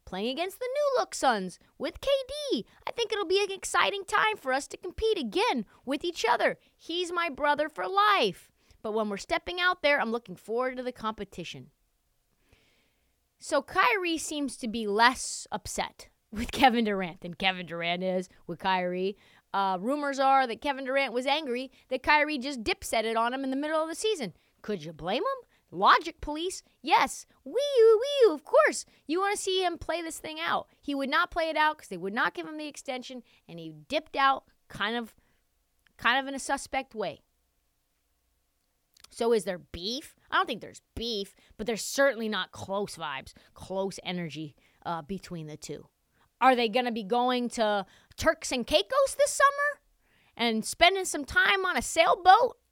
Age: 30-49